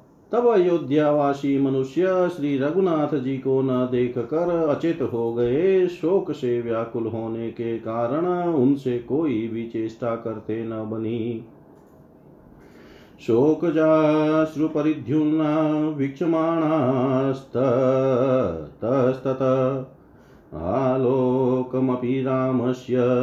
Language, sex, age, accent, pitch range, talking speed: Hindi, male, 40-59, native, 120-155 Hz, 85 wpm